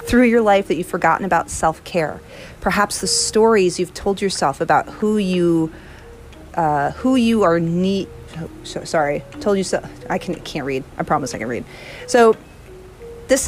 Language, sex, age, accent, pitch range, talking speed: English, female, 40-59, American, 160-210 Hz, 175 wpm